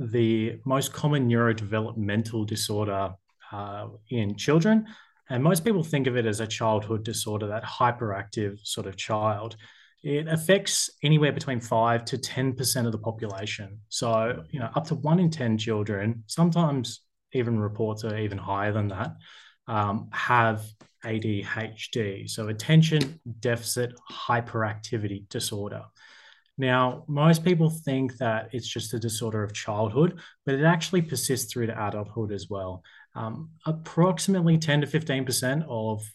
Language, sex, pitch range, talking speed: English, male, 110-145 Hz, 140 wpm